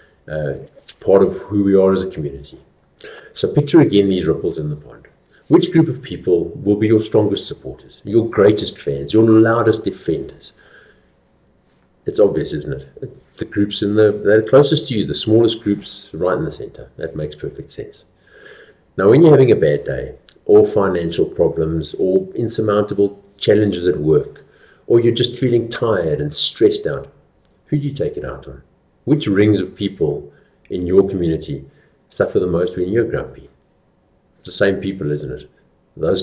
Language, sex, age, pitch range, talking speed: English, male, 50-69, 95-150 Hz, 170 wpm